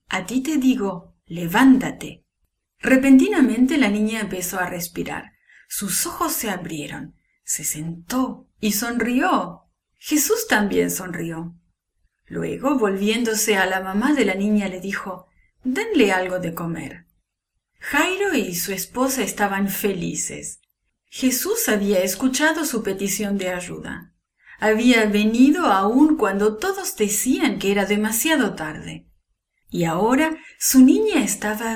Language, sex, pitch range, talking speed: English, female, 185-265 Hz, 120 wpm